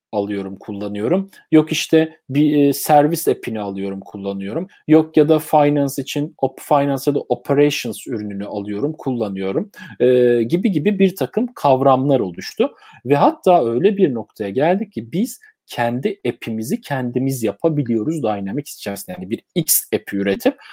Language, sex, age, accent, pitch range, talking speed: Turkish, male, 40-59, native, 120-155 Hz, 135 wpm